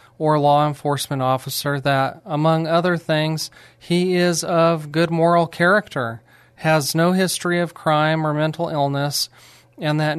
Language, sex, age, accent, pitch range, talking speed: English, male, 40-59, American, 140-165 Hz, 140 wpm